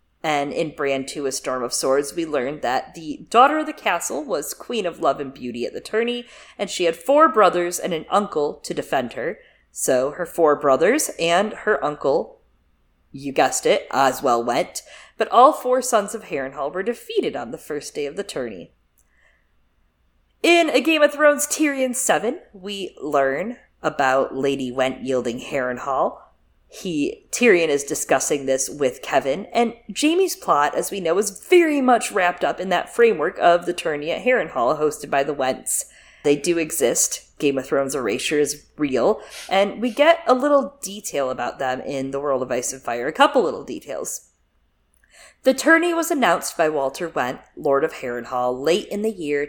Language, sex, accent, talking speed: English, female, American, 180 wpm